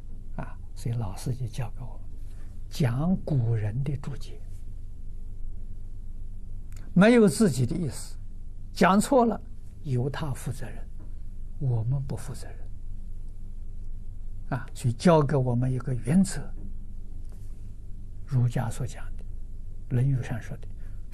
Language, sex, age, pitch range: Chinese, male, 60-79, 95-135 Hz